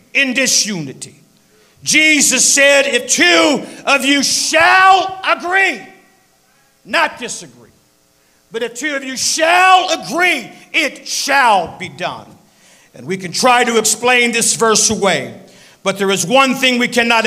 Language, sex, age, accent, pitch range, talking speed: English, male, 50-69, American, 220-265 Hz, 135 wpm